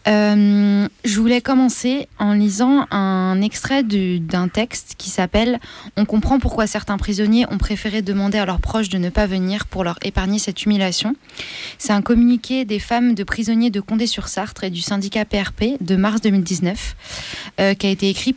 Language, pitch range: French, 190-220 Hz